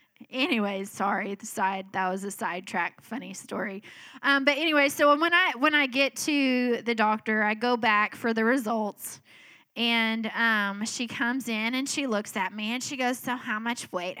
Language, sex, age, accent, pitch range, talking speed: English, female, 10-29, American, 195-245 Hz, 190 wpm